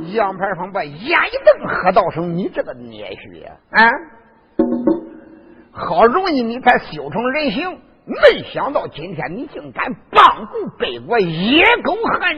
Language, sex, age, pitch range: Chinese, male, 50-69, 200-320 Hz